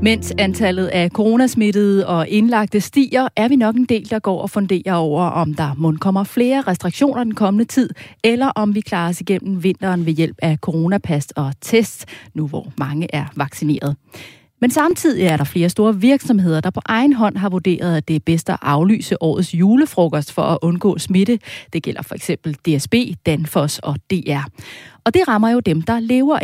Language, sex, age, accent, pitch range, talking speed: Danish, female, 30-49, native, 165-220 Hz, 185 wpm